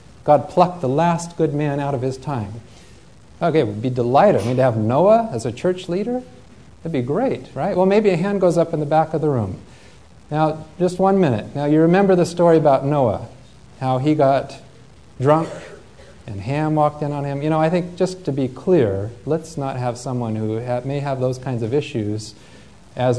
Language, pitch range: English, 120-160 Hz